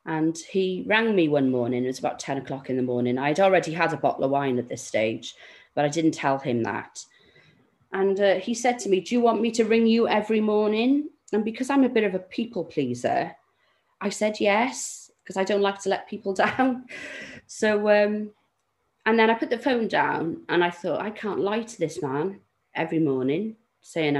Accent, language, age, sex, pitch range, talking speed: British, English, 30-49, female, 160-225 Hz, 215 wpm